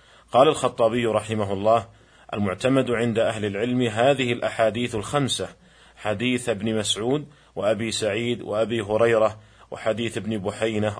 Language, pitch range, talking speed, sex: Arabic, 110-130 Hz, 115 wpm, male